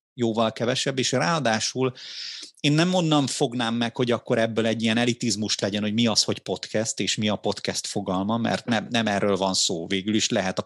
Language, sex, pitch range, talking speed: Hungarian, male, 100-125 Hz, 195 wpm